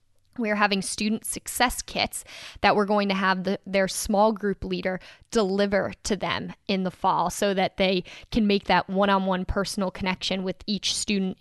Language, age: English, 10-29